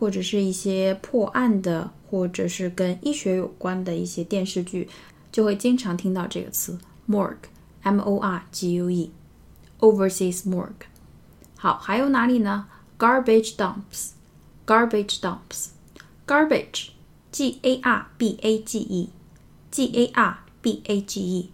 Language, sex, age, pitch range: Chinese, female, 20-39, 190-240 Hz